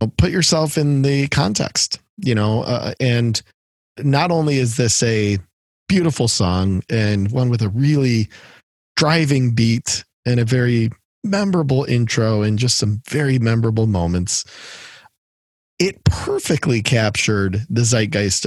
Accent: American